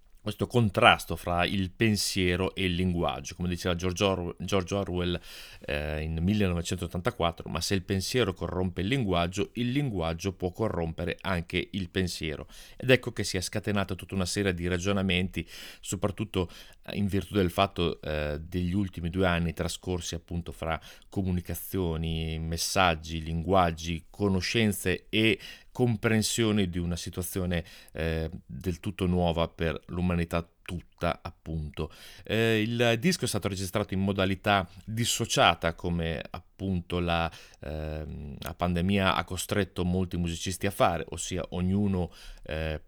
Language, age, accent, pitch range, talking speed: Italian, 30-49, native, 85-100 Hz, 135 wpm